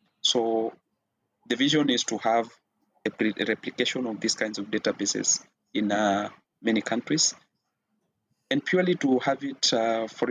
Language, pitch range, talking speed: English, 105-125 Hz, 145 wpm